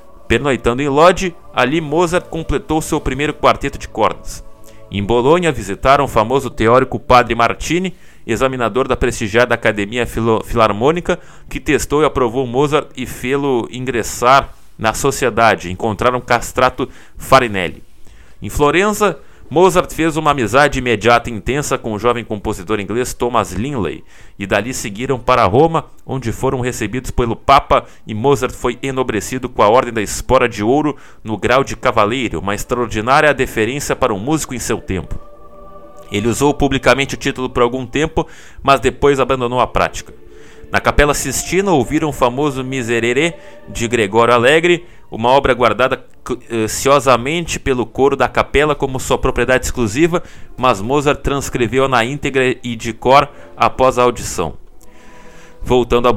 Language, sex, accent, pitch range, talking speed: Portuguese, male, Brazilian, 115-140 Hz, 145 wpm